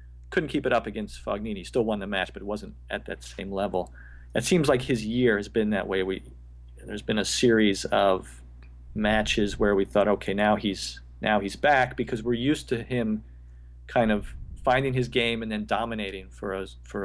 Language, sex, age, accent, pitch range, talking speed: English, male, 40-59, American, 90-120 Hz, 210 wpm